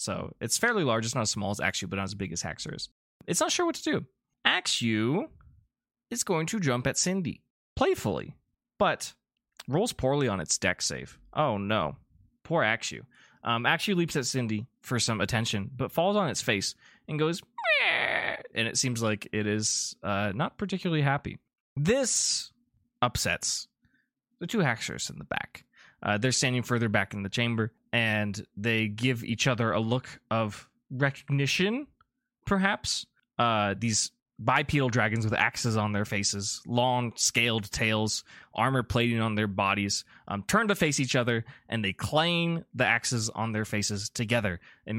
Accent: American